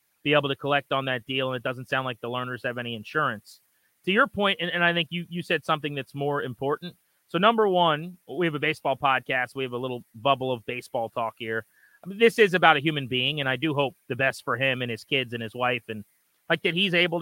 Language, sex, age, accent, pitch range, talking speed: English, male, 30-49, American, 135-185 Hz, 260 wpm